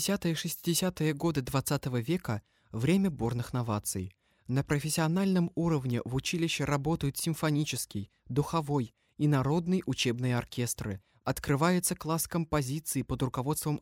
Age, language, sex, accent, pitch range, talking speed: 20-39, Russian, male, native, 120-165 Hz, 115 wpm